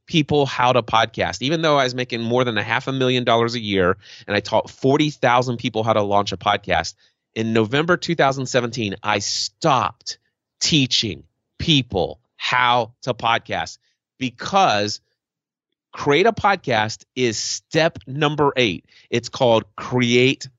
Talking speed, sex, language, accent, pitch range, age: 145 wpm, male, English, American, 110-145 Hz, 30-49